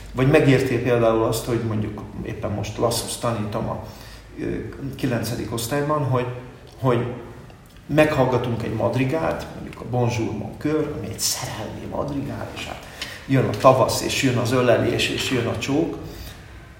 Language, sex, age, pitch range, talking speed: Hungarian, male, 50-69, 115-135 Hz, 145 wpm